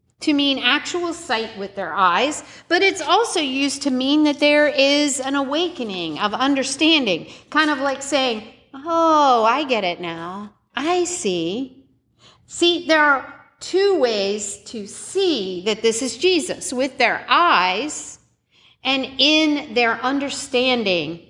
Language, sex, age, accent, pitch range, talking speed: English, female, 50-69, American, 220-300 Hz, 140 wpm